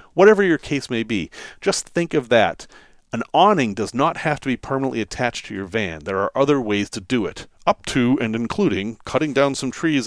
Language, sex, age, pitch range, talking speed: English, male, 40-59, 100-165 Hz, 215 wpm